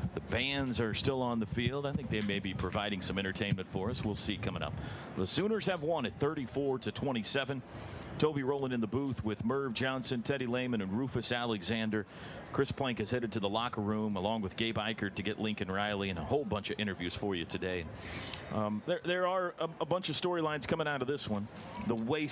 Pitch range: 105-145 Hz